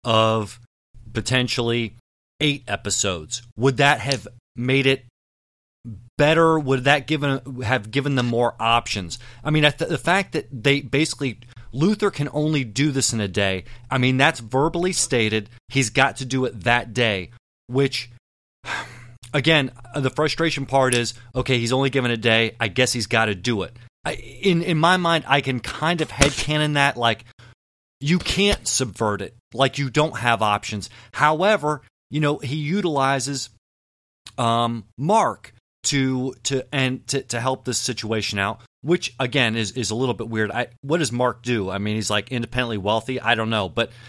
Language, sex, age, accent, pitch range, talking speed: English, male, 30-49, American, 115-140 Hz, 170 wpm